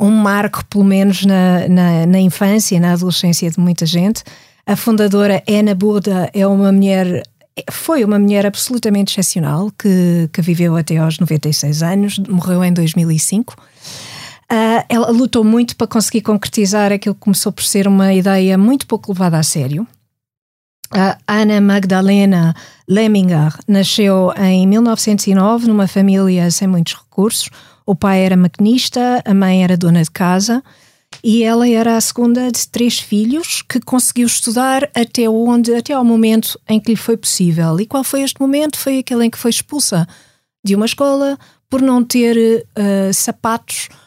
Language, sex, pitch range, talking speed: Portuguese, female, 180-225 Hz, 155 wpm